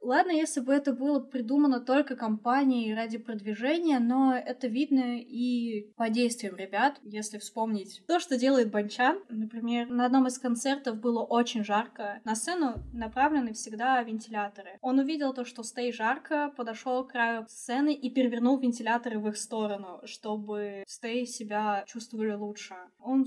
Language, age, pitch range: Russian, 10-29, 215-255 Hz